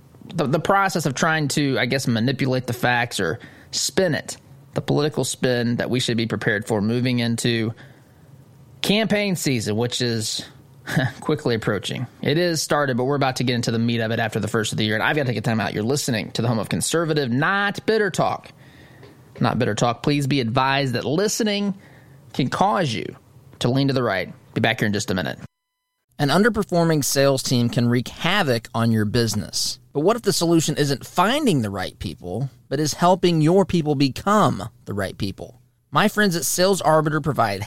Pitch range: 120-155 Hz